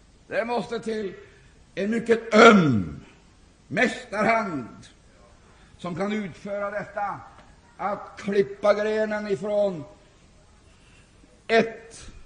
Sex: male